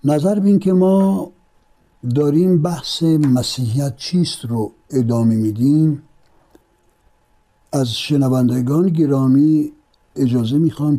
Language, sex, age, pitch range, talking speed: Persian, male, 60-79, 120-155 Hz, 85 wpm